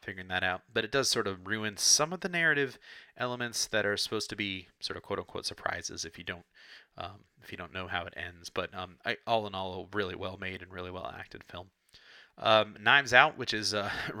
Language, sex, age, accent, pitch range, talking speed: English, male, 30-49, American, 90-105 Hz, 230 wpm